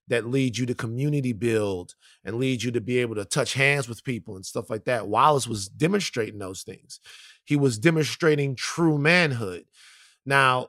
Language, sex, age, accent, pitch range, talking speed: English, male, 30-49, American, 120-155 Hz, 180 wpm